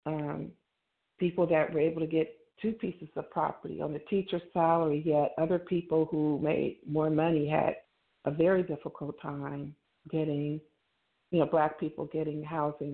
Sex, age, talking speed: female, 50-69, 160 wpm